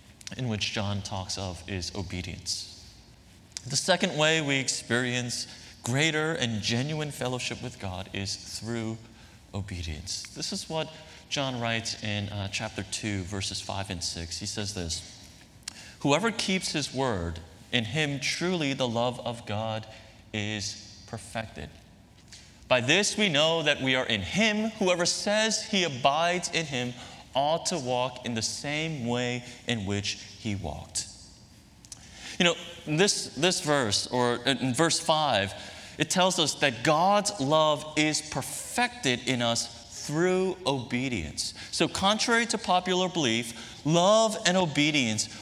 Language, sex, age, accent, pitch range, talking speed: English, male, 30-49, American, 105-155 Hz, 140 wpm